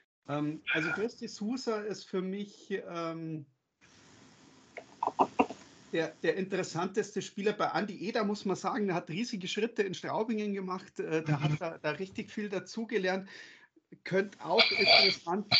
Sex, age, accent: male, 40-59, German